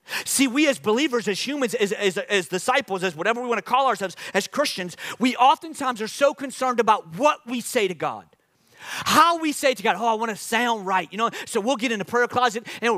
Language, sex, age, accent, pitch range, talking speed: English, male, 40-59, American, 220-285 Hz, 235 wpm